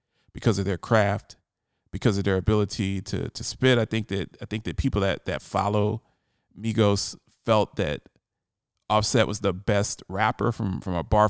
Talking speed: 175 wpm